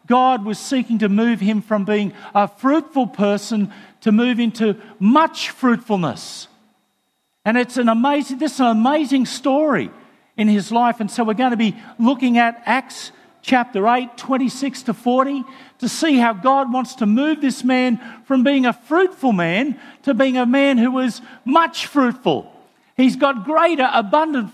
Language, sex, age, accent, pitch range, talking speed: English, male, 50-69, Australian, 210-260 Hz, 165 wpm